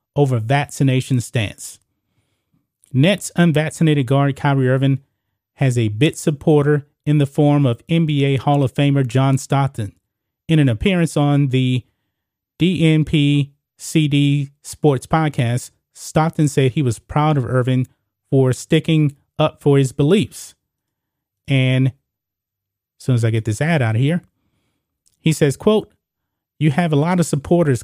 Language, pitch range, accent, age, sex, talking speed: English, 125-155 Hz, American, 30-49, male, 140 wpm